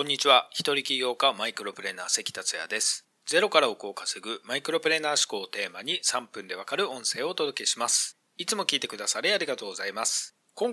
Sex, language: male, Japanese